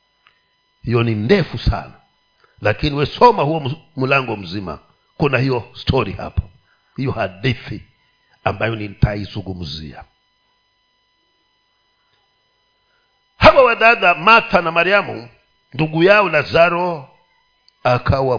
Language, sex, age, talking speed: Swahili, male, 50-69, 90 wpm